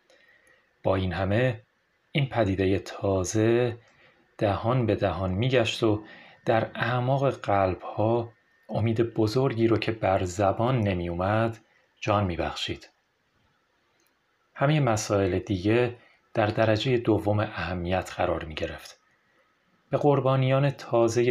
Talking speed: 100 wpm